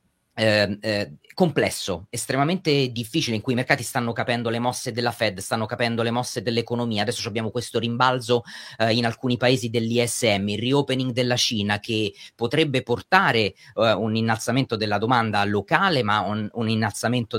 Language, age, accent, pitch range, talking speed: Italian, 30-49, native, 110-130 Hz, 145 wpm